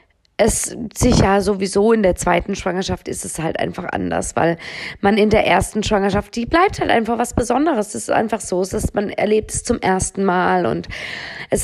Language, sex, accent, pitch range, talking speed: German, female, German, 185-230 Hz, 200 wpm